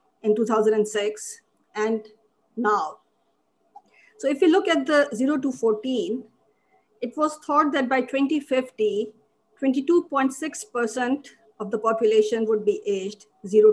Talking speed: 120 wpm